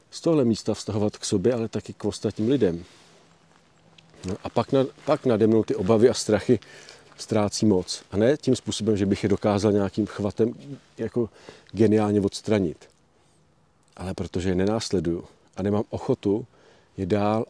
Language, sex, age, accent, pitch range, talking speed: Czech, male, 40-59, native, 100-115 Hz, 160 wpm